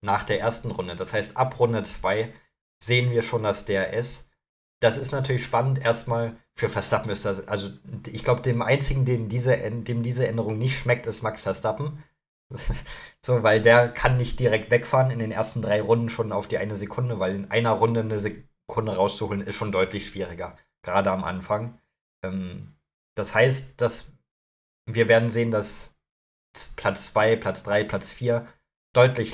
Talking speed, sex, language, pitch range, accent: 170 wpm, male, German, 100-120 Hz, German